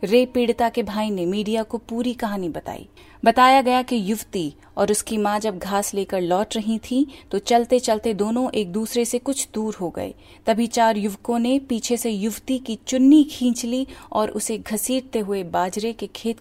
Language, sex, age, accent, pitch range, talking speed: Hindi, female, 30-49, native, 200-245 Hz, 190 wpm